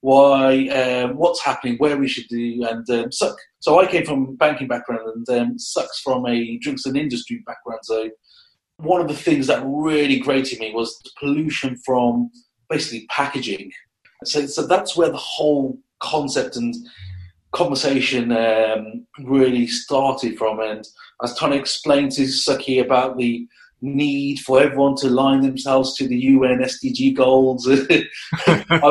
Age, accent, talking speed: 30-49, British, 160 wpm